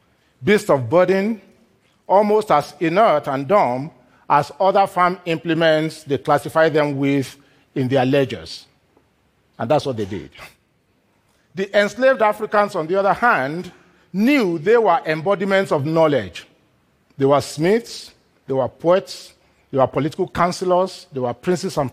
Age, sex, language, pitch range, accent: 50-69, male, Korean, 135-185 Hz, Nigerian